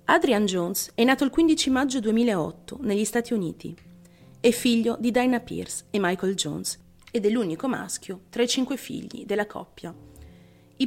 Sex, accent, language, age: female, native, Italian, 30-49